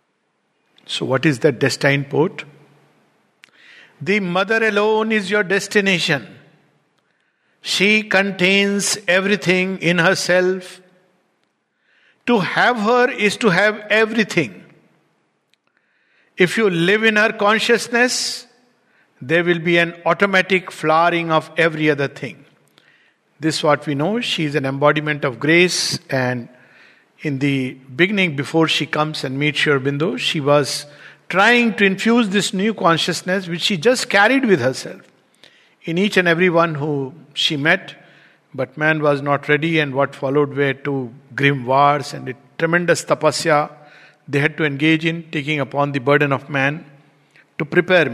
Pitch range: 145-195 Hz